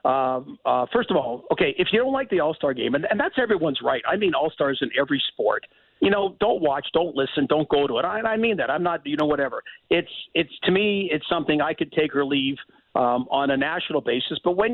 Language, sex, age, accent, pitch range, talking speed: English, male, 50-69, American, 140-170 Hz, 250 wpm